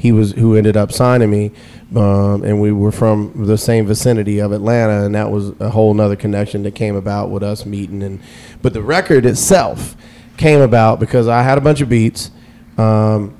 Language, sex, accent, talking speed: English, male, American, 200 wpm